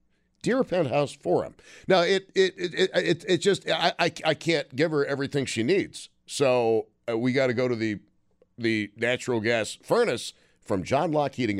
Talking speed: 195 wpm